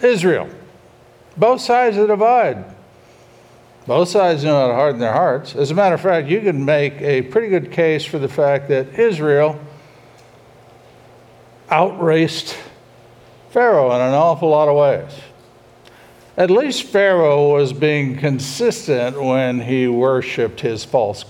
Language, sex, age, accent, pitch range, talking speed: English, male, 60-79, American, 130-200 Hz, 140 wpm